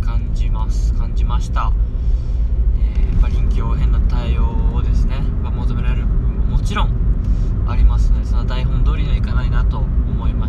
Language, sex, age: Japanese, male, 20-39